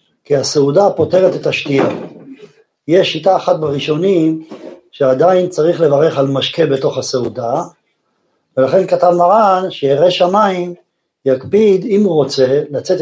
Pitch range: 140-190 Hz